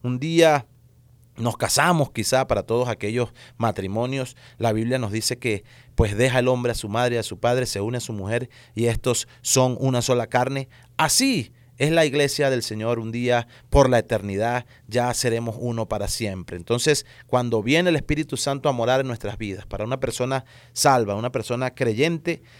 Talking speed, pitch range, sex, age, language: 185 wpm, 115-135 Hz, male, 30-49, English